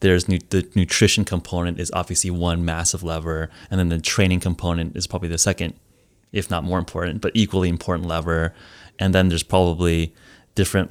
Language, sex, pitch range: English, male, 85-100 Hz